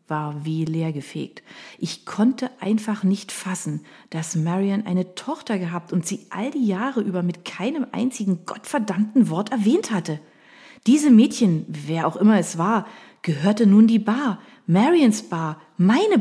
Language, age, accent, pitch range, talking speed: German, 30-49, German, 175-225 Hz, 150 wpm